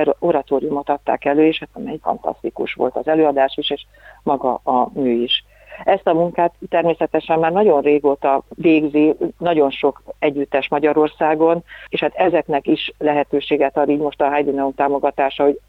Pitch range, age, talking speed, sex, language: 140-160 Hz, 50-69, 150 wpm, female, Hungarian